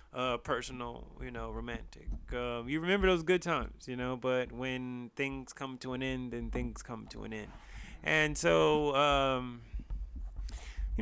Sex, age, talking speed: male, 20-39, 165 wpm